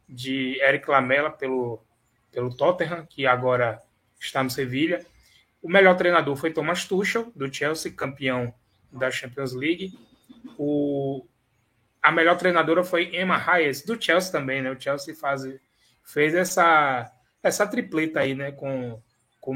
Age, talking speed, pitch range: 20-39, 140 wpm, 130-175 Hz